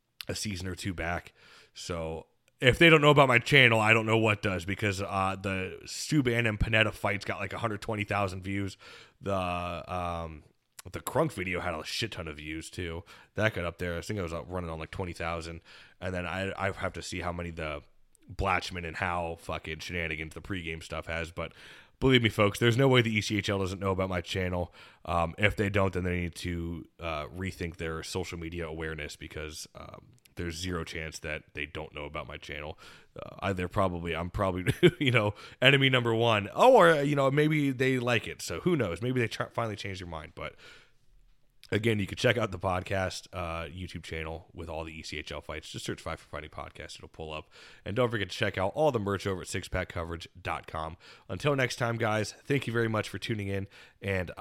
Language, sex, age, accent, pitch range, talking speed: English, male, 20-39, American, 85-110 Hz, 205 wpm